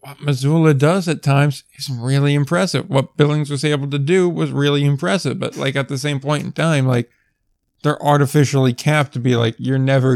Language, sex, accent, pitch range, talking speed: English, male, American, 130-150 Hz, 200 wpm